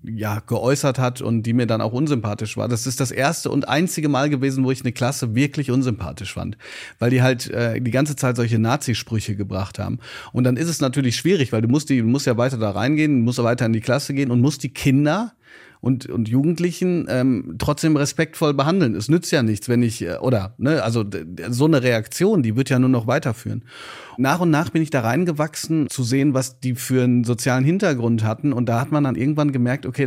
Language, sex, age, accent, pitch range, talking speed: German, male, 40-59, German, 115-145 Hz, 225 wpm